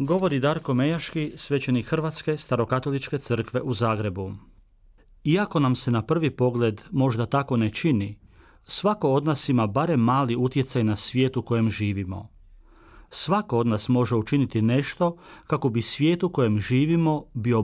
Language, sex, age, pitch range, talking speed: Croatian, male, 40-59, 110-145 Hz, 145 wpm